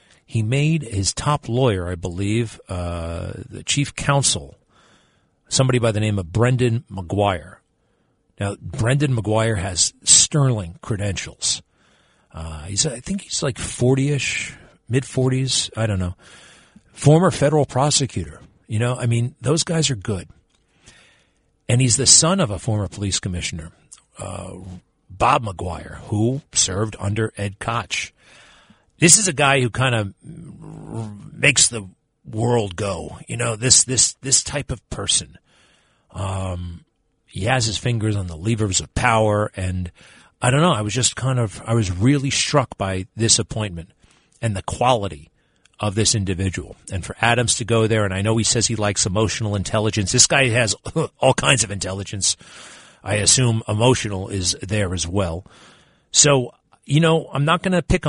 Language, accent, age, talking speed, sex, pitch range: English, American, 40-59, 160 wpm, male, 95-130 Hz